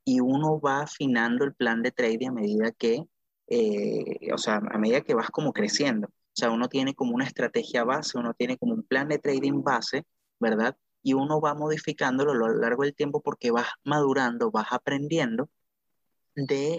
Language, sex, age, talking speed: Spanish, male, 30-49, 185 wpm